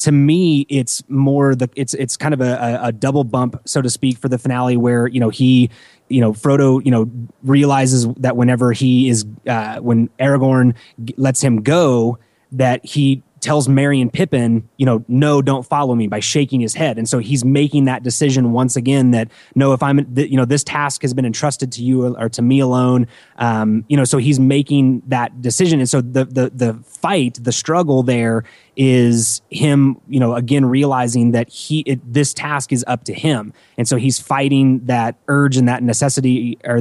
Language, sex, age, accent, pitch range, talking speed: English, male, 20-39, American, 120-140 Hz, 200 wpm